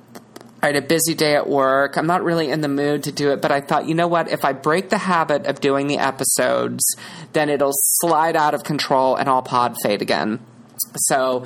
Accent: American